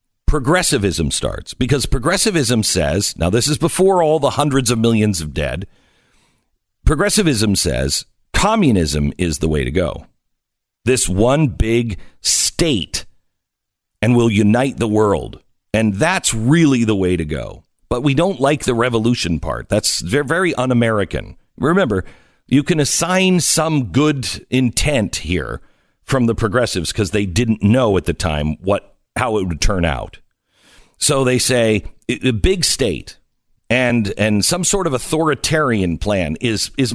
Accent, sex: American, male